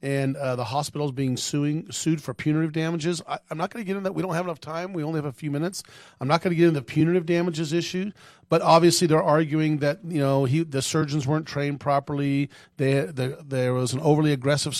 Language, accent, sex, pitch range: English, American, male, 135-160 Hz